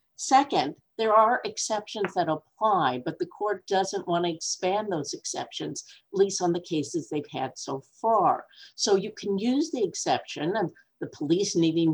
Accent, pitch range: American, 150-215 Hz